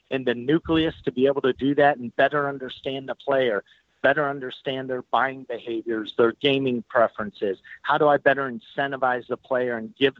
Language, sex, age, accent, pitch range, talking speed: English, male, 50-69, American, 115-140 Hz, 180 wpm